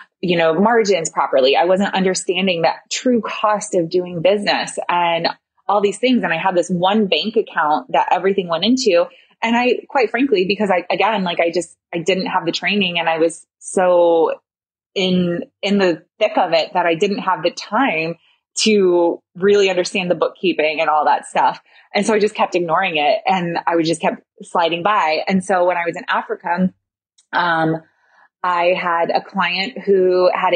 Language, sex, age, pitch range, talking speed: English, female, 20-39, 170-205 Hz, 190 wpm